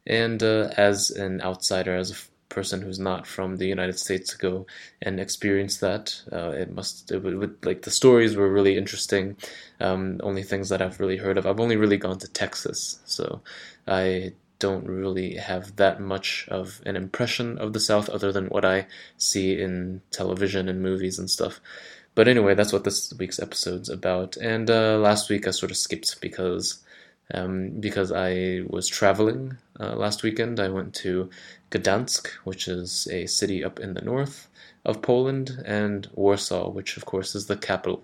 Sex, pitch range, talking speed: male, 95-100 Hz, 180 wpm